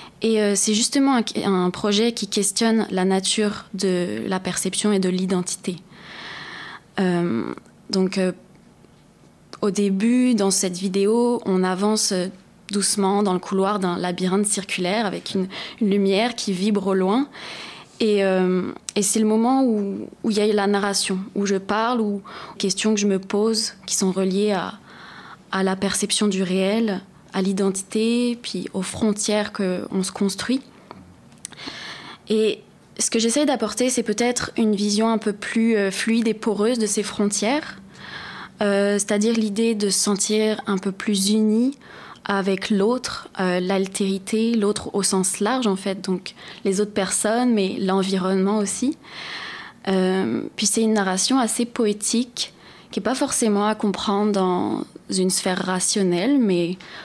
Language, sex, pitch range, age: English, female, 190-220 Hz, 20-39